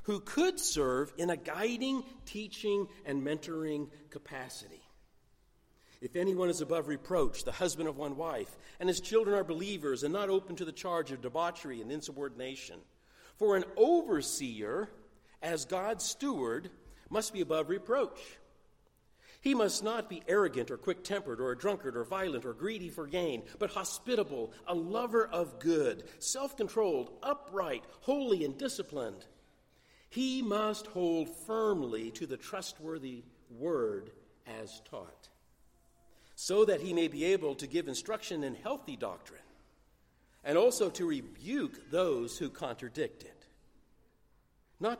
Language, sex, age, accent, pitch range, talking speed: English, male, 50-69, American, 165-235 Hz, 135 wpm